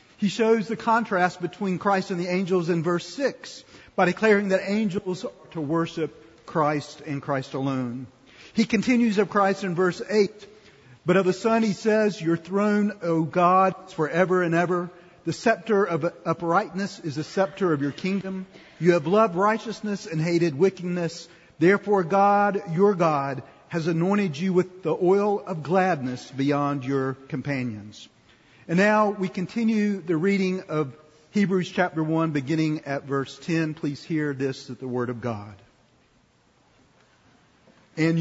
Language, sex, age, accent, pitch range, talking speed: English, male, 50-69, American, 155-195 Hz, 155 wpm